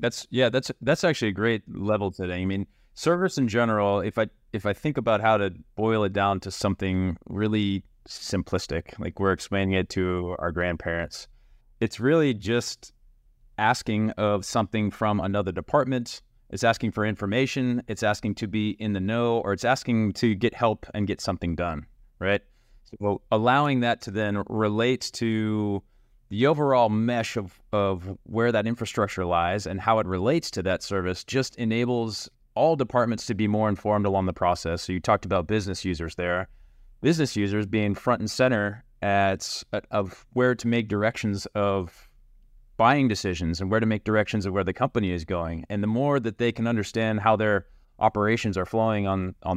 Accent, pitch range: American, 95-115 Hz